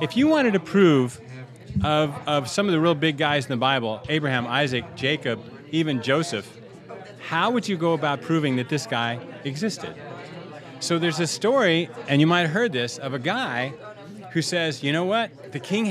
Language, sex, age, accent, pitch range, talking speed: English, male, 30-49, American, 140-185 Hz, 190 wpm